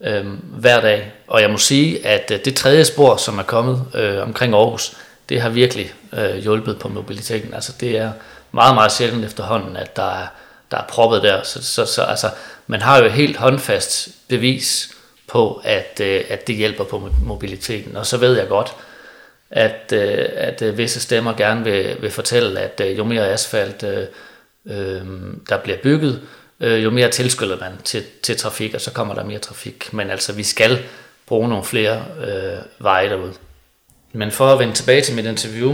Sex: male